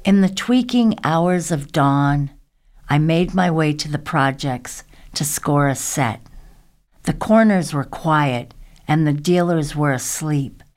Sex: female